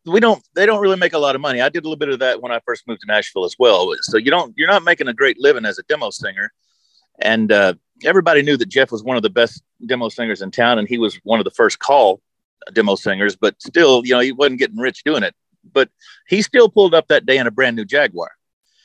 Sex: male